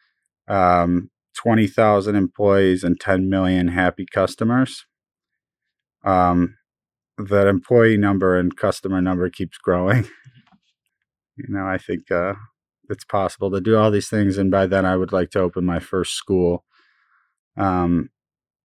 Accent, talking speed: American, 130 wpm